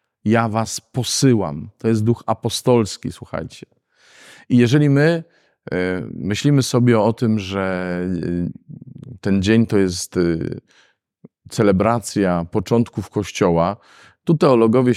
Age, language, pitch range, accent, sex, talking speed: 40-59, Polish, 95-125 Hz, native, male, 100 wpm